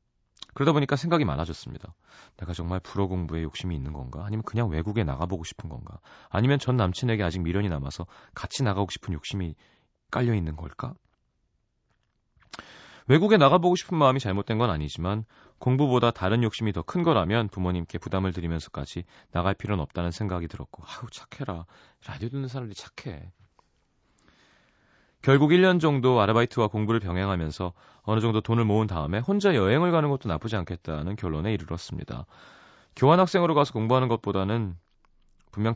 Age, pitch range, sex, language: 30-49, 90-125 Hz, male, Korean